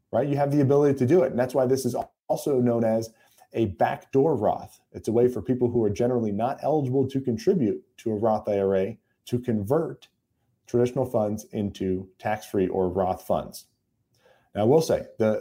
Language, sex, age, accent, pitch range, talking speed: English, male, 40-59, American, 105-130 Hz, 185 wpm